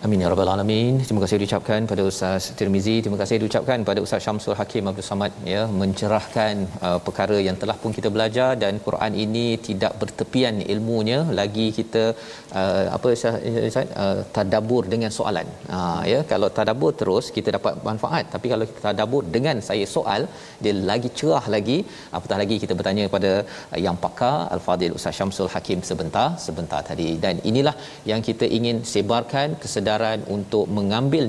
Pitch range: 100-120 Hz